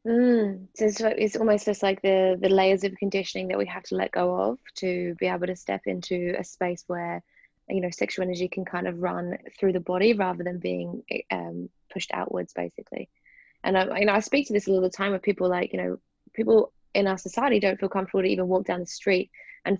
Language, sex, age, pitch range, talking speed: English, female, 20-39, 175-200 Hz, 225 wpm